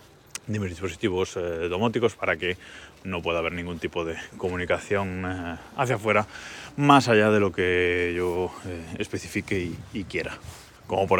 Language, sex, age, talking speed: Spanish, male, 20-39, 160 wpm